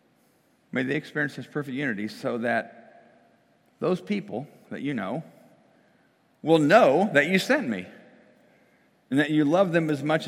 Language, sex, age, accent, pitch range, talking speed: English, male, 50-69, American, 125-165 Hz, 150 wpm